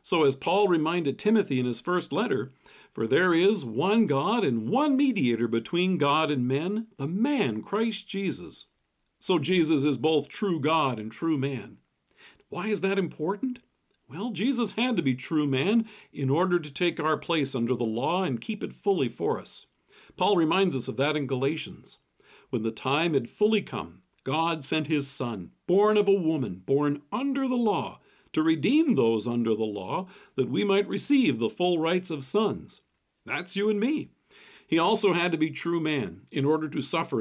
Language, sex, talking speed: English, male, 185 wpm